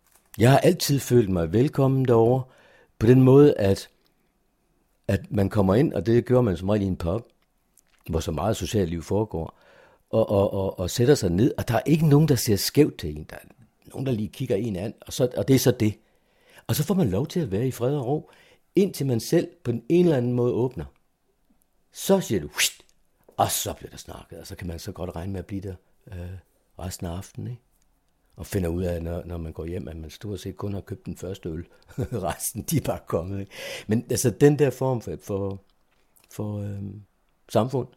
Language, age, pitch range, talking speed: Danish, 60-79, 90-125 Hz, 220 wpm